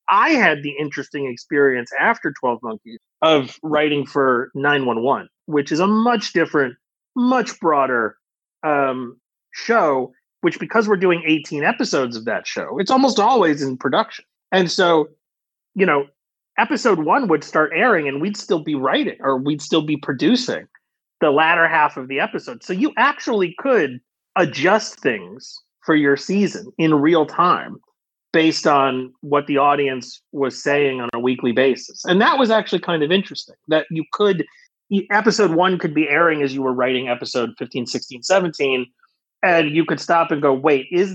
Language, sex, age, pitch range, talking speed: English, male, 30-49, 130-175 Hz, 165 wpm